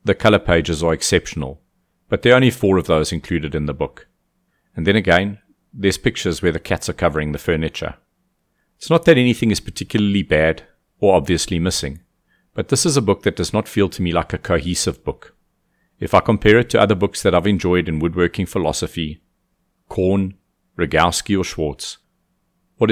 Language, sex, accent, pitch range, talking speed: English, male, South African, 80-105 Hz, 185 wpm